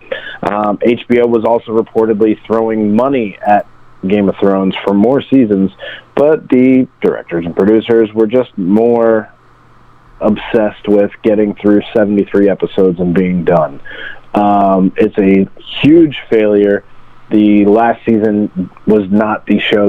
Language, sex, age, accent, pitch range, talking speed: English, male, 30-49, American, 95-110 Hz, 130 wpm